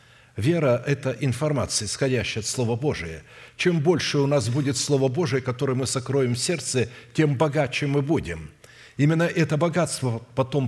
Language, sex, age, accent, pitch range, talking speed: Russian, male, 60-79, native, 120-140 Hz, 150 wpm